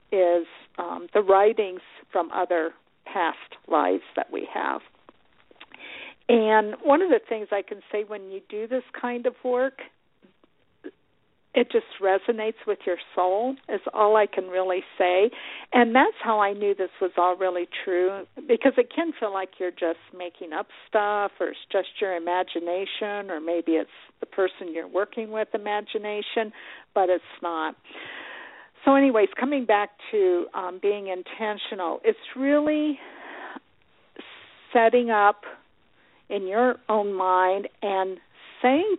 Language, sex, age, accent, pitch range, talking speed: English, female, 50-69, American, 185-235 Hz, 145 wpm